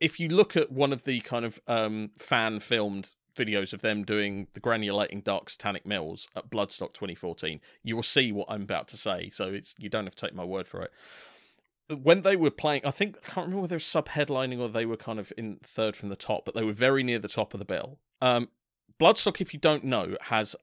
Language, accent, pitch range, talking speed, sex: English, British, 100-135 Hz, 240 wpm, male